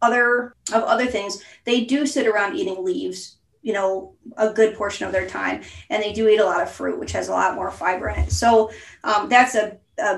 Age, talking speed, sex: 30-49, 230 wpm, female